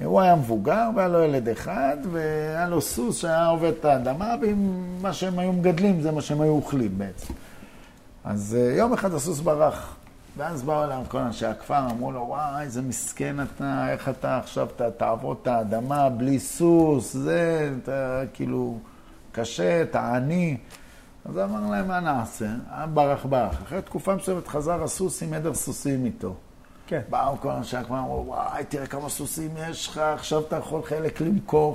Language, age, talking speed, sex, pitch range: Hebrew, 50-69, 165 wpm, male, 125-170 Hz